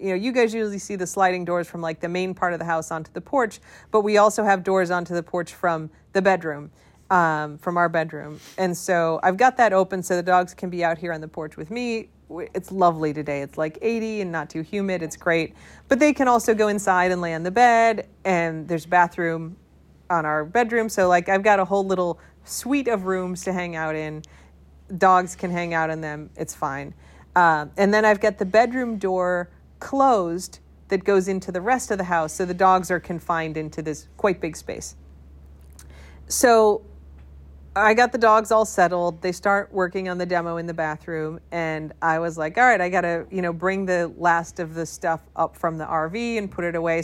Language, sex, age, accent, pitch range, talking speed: English, female, 30-49, American, 165-200 Hz, 220 wpm